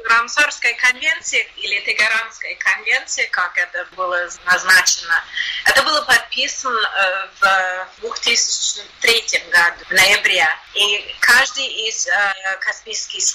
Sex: female